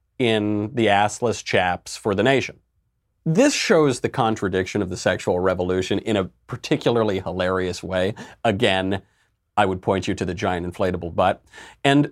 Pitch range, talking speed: 100-140 Hz, 155 wpm